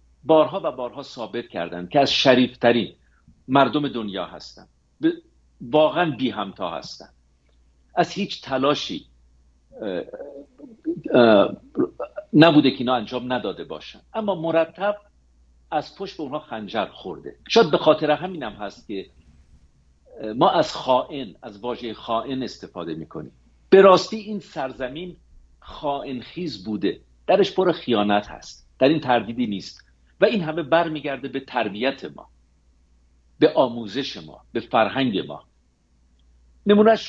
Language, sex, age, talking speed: English, male, 50-69, 125 wpm